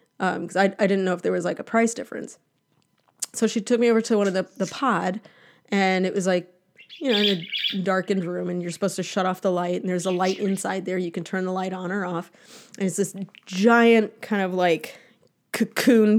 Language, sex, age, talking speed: English, female, 30-49, 235 wpm